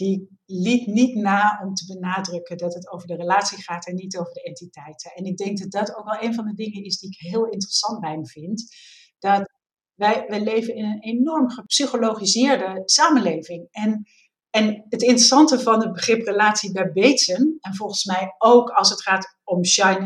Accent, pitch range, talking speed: Dutch, 190-230 Hz, 195 wpm